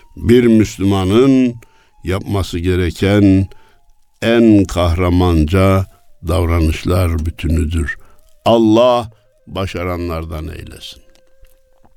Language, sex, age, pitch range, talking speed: Turkish, male, 60-79, 90-145 Hz, 55 wpm